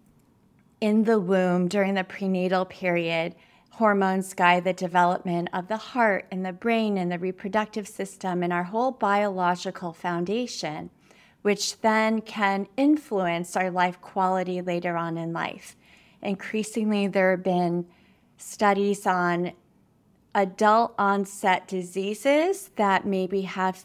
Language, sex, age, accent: English, female, 30-49, American